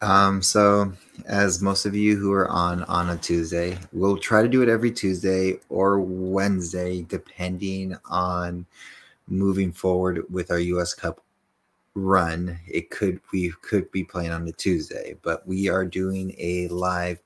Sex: male